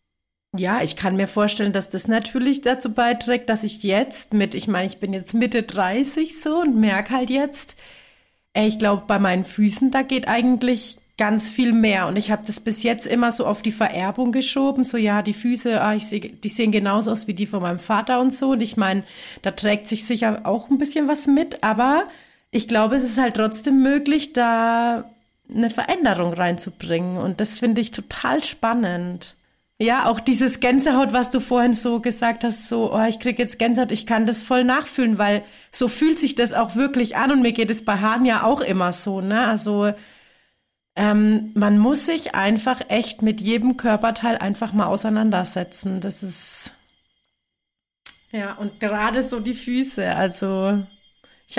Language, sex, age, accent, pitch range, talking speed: German, female, 30-49, German, 210-250 Hz, 185 wpm